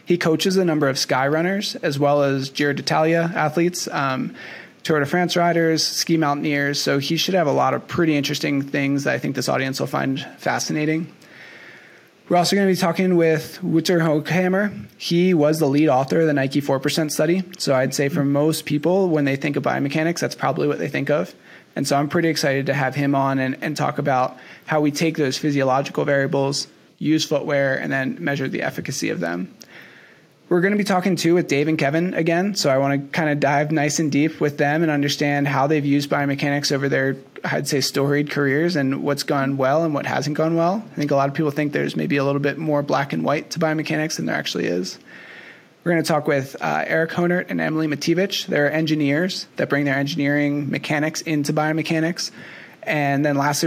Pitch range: 140-165 Hz